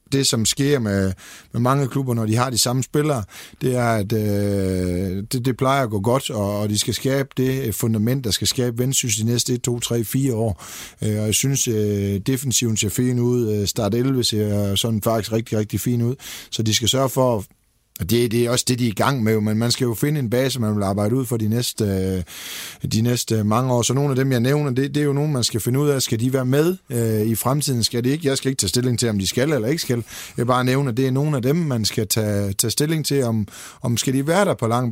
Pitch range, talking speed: 110-135 Hz, 265 wpm